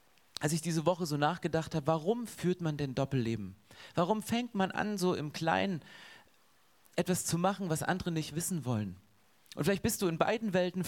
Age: 30-49